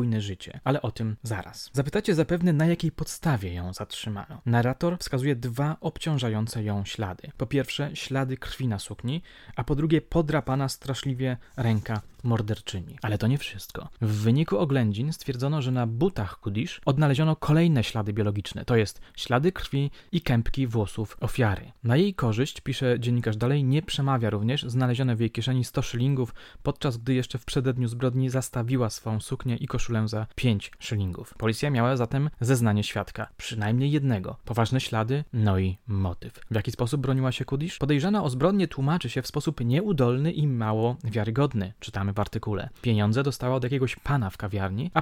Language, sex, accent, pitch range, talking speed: Polish, male, native, 110-145 Hz, 165 wpm